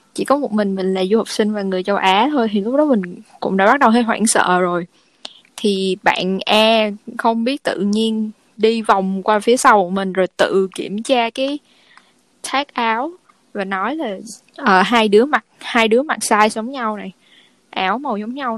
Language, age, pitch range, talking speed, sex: Vietnamese, 10-29, 200-260 Hz, 215 wpm, female